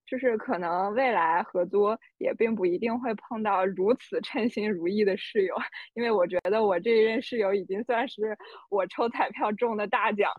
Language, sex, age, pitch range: Chinese, female, 20-39, 190-240 Hz